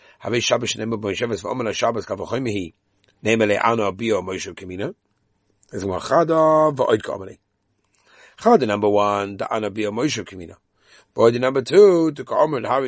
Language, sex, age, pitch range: English, male, 30-49, 105-140 Hz